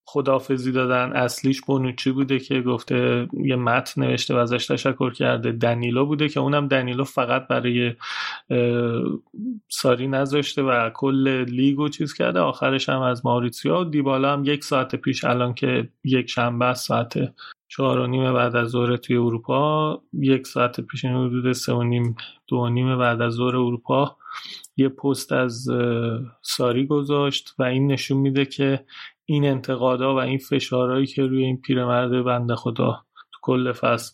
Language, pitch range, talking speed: Persian, 125-140 Hz, 155 wpm